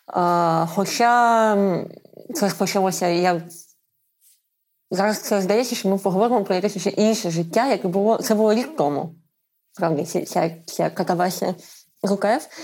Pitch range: 180-215 Hz